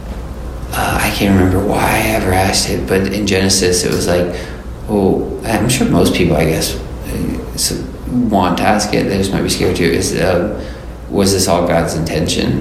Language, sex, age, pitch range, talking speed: English, male, 20-39, 90-115 Hz, 185 wpm